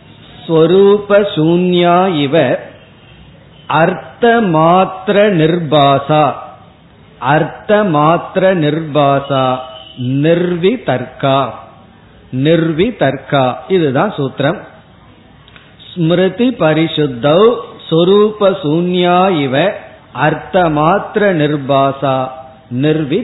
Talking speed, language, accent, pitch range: 50 wpm, Tamil, native, 145-190 Hz